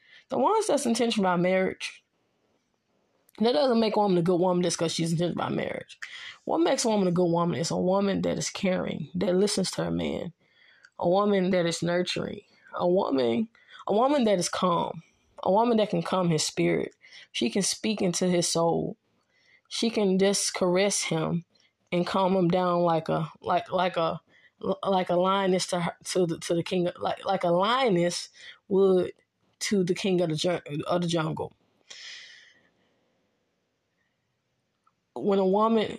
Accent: American